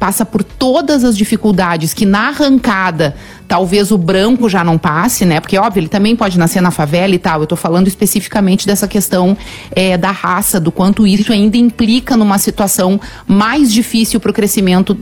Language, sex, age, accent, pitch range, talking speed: Portuguese, female, 40-59, Brazilian, 180-240 Hz, 175 wpm